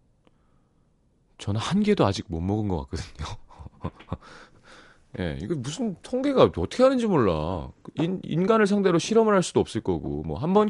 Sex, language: male, Korean